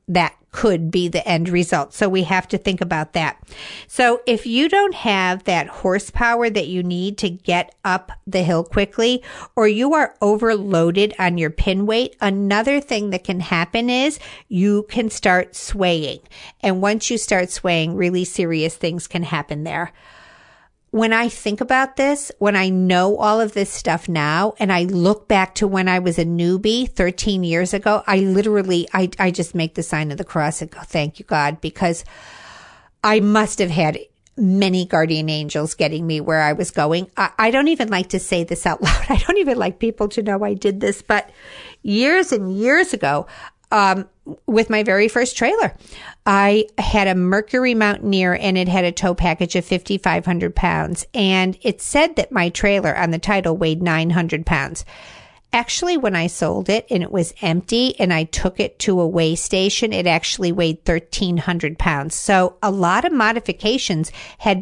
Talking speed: 190 wpm